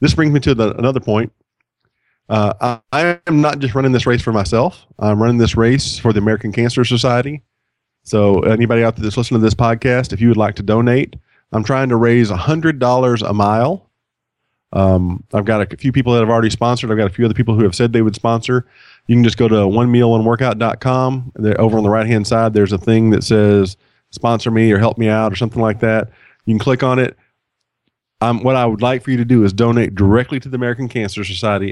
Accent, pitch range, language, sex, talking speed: American, 110-125 Hz, English, male, 225 wpm